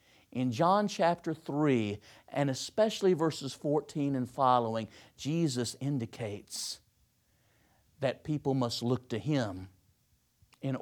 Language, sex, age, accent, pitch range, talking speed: English, male, 50-69, American, 115-155 Hz, 105 wpm